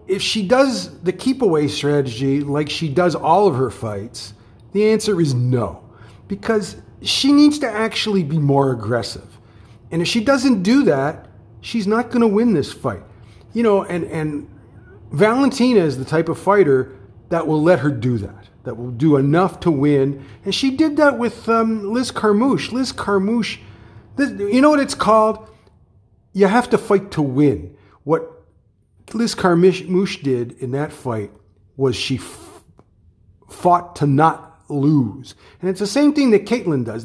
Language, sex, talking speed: English, male, 170 wpm